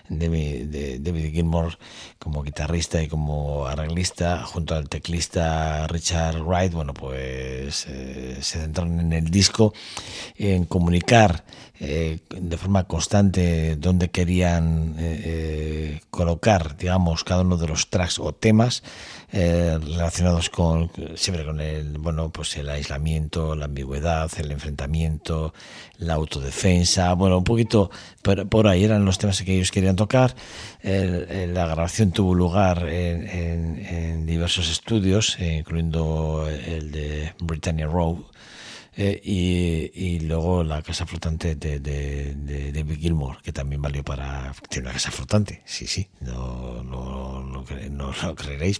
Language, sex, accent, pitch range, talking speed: Spanish, male, Spanish, 75-90 Hz, 145 wpm